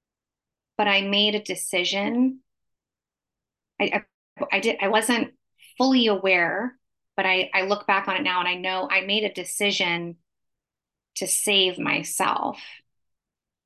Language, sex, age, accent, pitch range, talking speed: English, female, 30-49, American, 185-210 Hz, 130 wpm